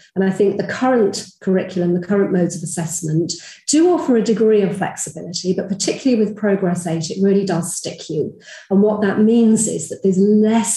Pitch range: 175-205 Hz